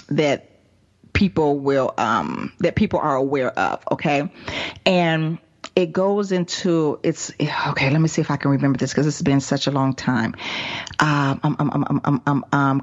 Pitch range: 135-175 Hz